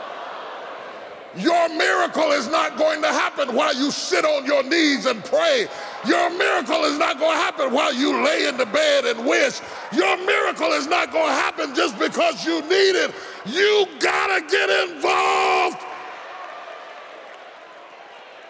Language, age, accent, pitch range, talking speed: English, 40-59, American, 285-375 Hz, 150 wpm